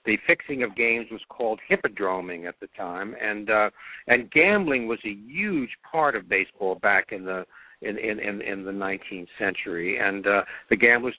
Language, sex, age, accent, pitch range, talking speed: English, male, 60-79, American, 95-110 Hz, 180 wpm